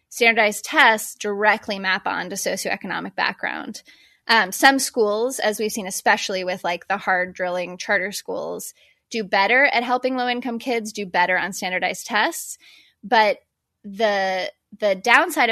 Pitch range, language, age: 185-240 Hz, English, 20-39